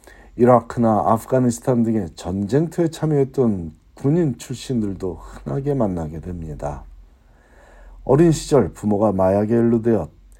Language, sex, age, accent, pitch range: Korean, male, 40-59, native, 90-125 Hz